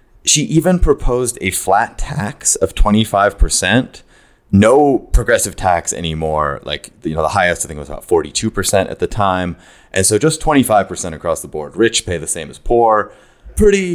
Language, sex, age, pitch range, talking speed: English, male, 30-49, 85-120 Hz, 170 wpm